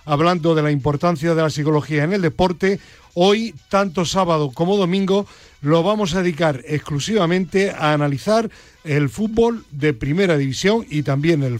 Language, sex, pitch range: Spanish, male, 145-190 Hz